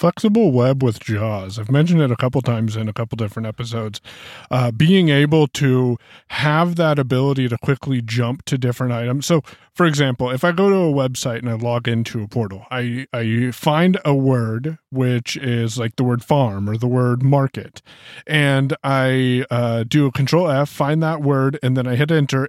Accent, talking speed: American, 195 wpm